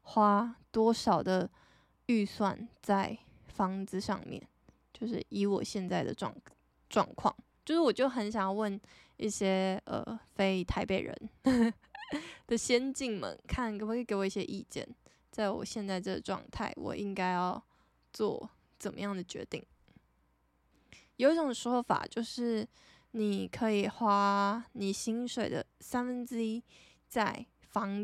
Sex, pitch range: female, 200-235 Hz